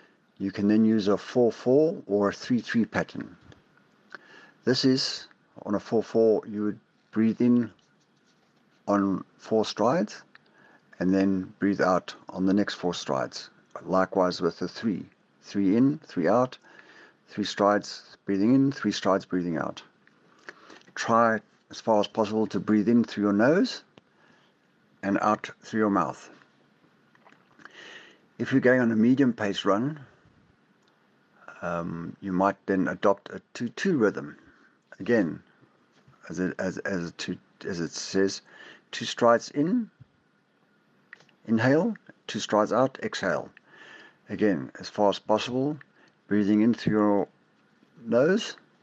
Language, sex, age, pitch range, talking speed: English, male, 60-79, 95-120 Hz, 135 wpm